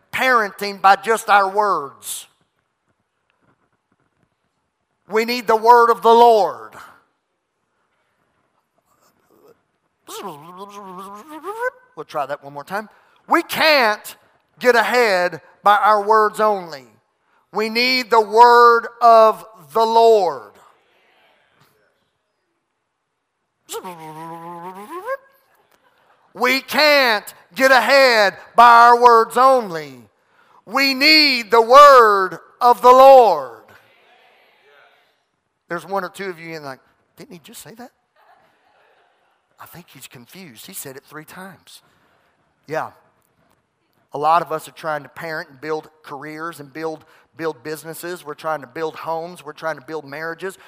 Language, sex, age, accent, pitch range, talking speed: English, male, 40-59, American, 160-240 Hz, 115 wpm